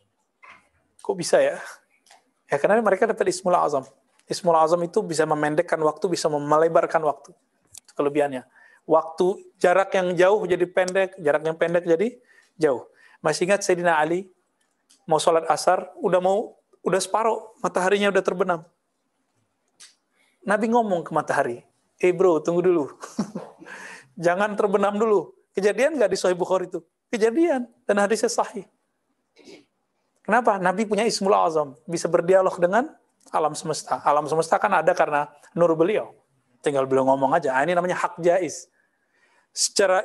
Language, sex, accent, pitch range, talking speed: Indonesian, male, native, 165-210 Hz, 140 wpm